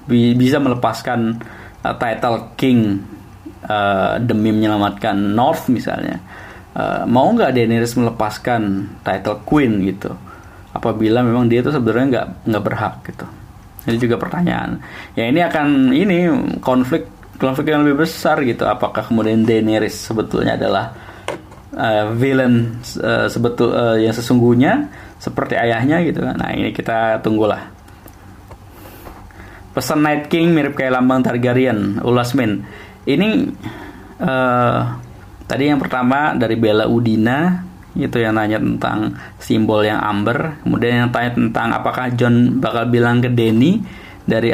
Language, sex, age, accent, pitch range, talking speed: Indonesian, male, 20-39, native, 105-130 Hz, 125 wpm